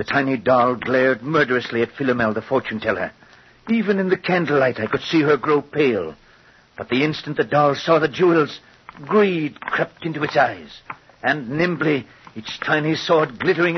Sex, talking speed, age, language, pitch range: male, 170 wpm, 60-79, English, 155-220 Hz